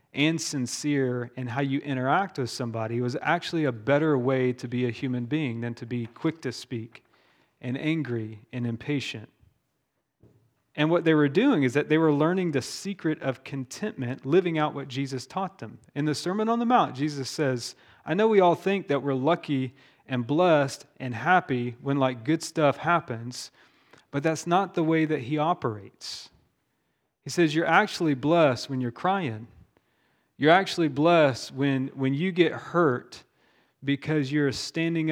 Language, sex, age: English, male, 30-49